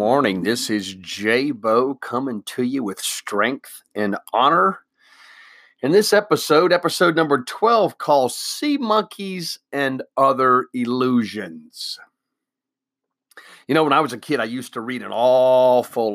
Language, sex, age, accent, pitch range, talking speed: English, male, 40-59, American, 105-150 Hz, 135 wpm